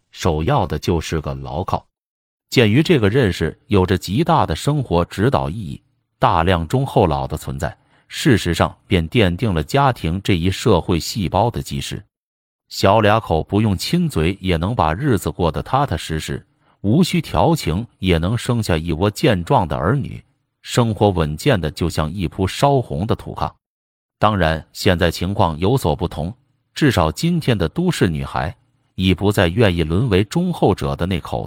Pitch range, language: 80-125 Hz, Chinese